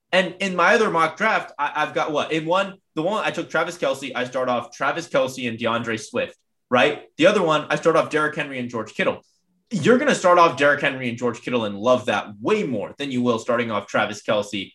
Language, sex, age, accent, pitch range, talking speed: English, male, 20-39, American, 120-165 Hz, 240 wpm